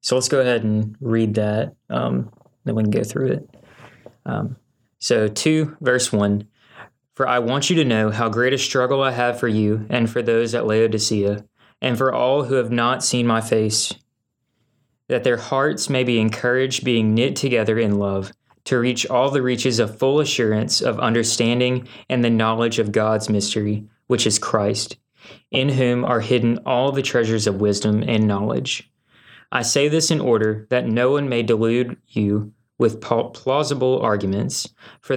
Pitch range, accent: 110-125 Hz, American